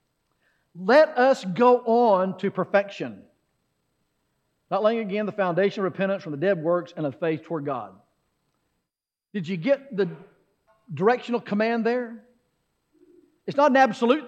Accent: American